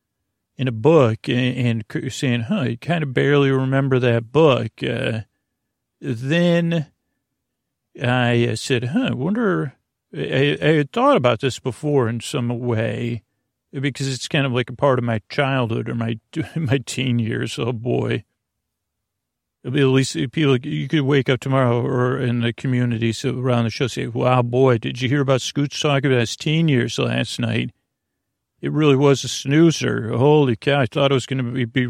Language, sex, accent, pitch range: English, male, American, 115-140 Hz